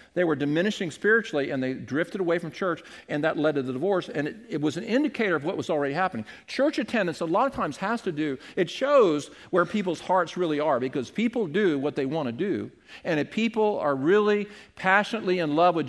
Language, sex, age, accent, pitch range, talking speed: English, male, 50-69, American, 145-205 Hz, 225 wpm